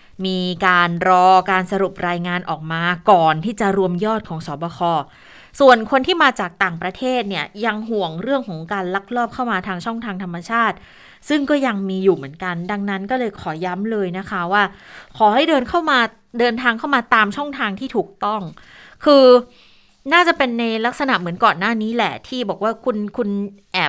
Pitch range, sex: 185-235 Hz, female